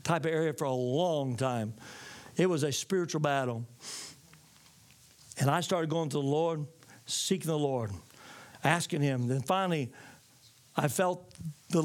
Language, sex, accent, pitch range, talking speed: English, male, American, 135-205 Hz, 145 wpm